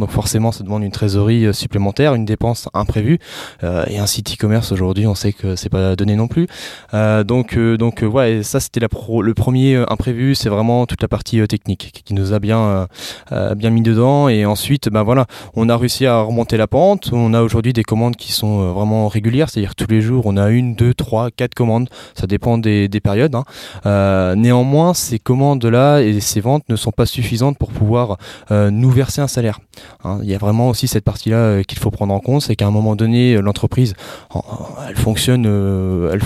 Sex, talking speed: male, 210 wpm